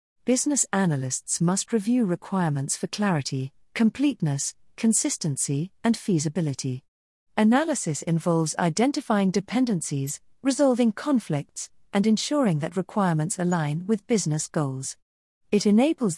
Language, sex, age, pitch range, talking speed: English, female, 50-69, 150-210 Hz, 100 wpm